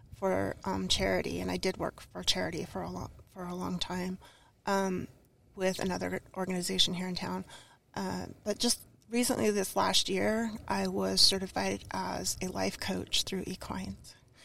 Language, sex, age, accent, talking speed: English, female, 30-49, American, 160 wpm